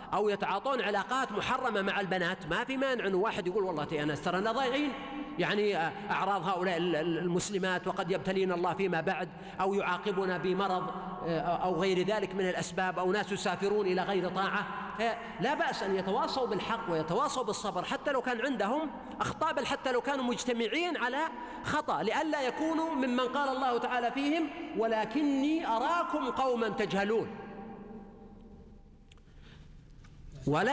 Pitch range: 185-245 Hz